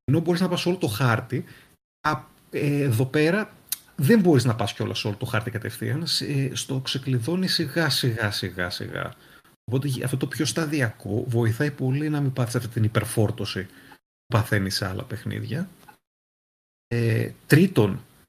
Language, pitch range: Greek, 110-135 Hz